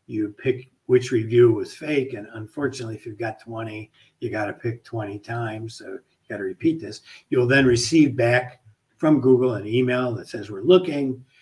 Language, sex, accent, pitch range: English, male, American, 110-135 Hz